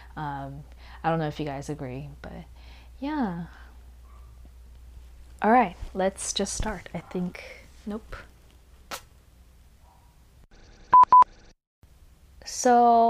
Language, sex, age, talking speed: English, female, 20-39, 85 wpm